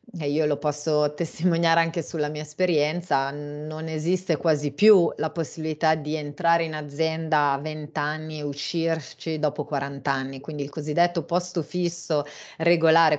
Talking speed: 150 wpm